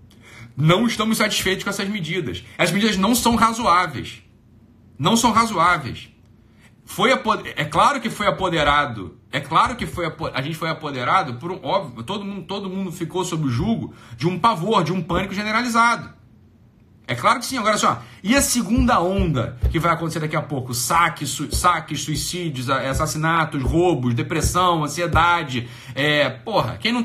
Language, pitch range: Portuguese, 145-215 Hz